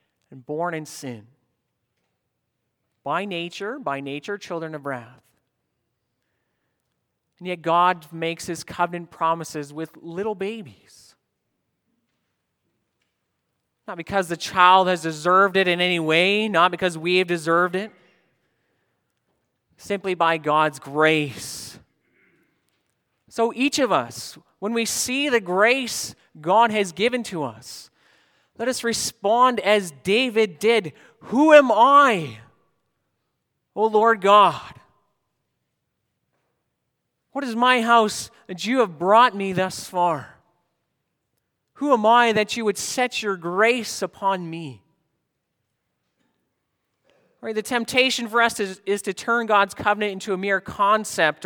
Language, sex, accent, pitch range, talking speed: English, male, American, 165-225 Hz, 120 wpm